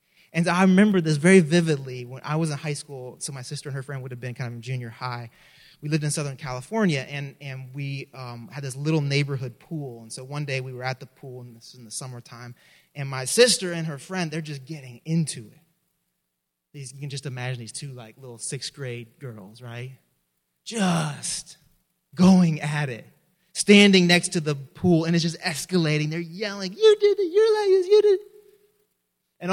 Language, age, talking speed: English, 20-39, 205 wpm